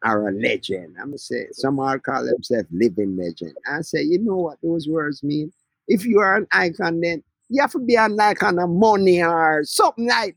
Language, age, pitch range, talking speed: English, 50-69, 125-195 Hz, 225 wpm